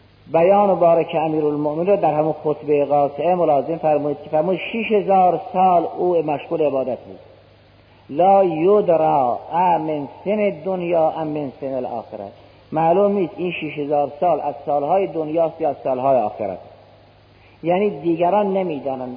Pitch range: 140-180 Hz